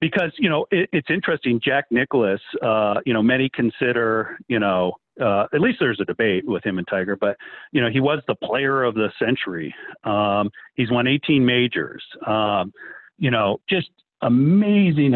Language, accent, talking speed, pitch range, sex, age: English, American, 180 wpm, 120-165 Hz, male, 50-69